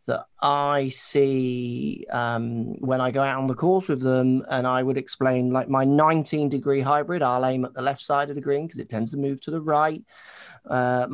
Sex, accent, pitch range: male, British, 125-150 Hz